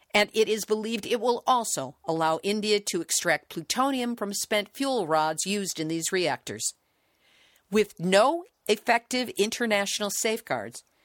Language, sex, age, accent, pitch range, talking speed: English, female, 50-69, American, 170-220 Hz, 135 wpm